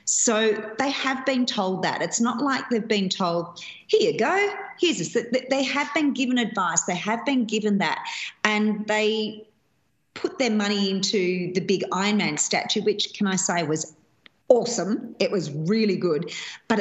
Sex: female